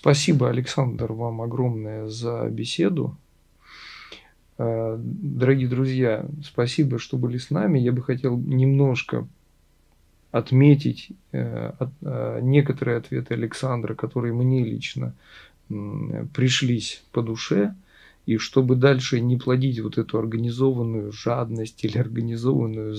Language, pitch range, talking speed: Russian, 115-140 Hz, 100 wpm